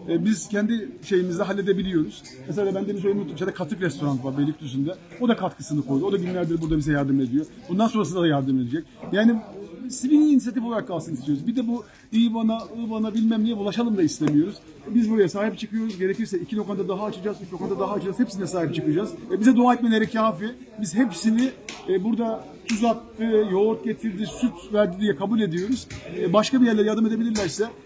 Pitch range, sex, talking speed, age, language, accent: 180-230 Hz, male, 185 wpm, 50-69, Turkish, native